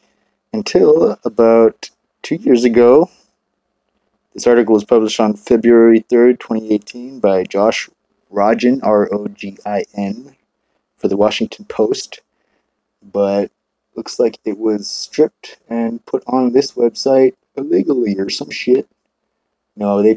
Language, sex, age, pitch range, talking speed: English, male, 30-49, 105-125 Hz, 115 wpm